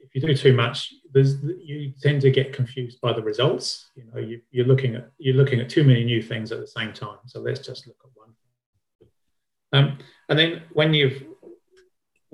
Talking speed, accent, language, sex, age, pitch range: 200 wpm, British, English, male, 40-59, 120-135 Hz